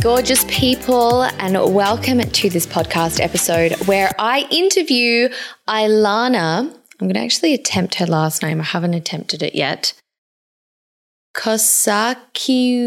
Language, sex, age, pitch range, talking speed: English, female, 10-29, 180-245 Hz, 120 wpm